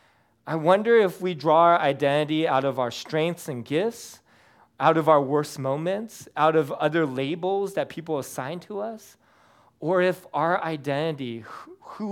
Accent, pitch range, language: American, 135-185 Hz, English